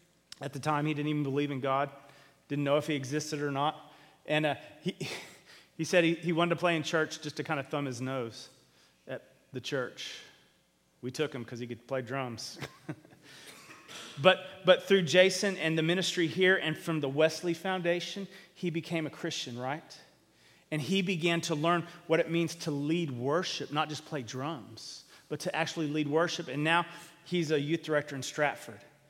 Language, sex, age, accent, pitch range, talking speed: English, male, 30-49, American, 140-170 Hz, 190 wpm